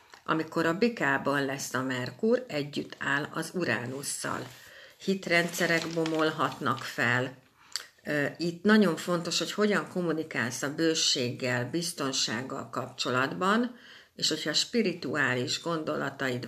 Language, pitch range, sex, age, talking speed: Hungarian, 135-185 Hz, female, 60-79, 100 wpm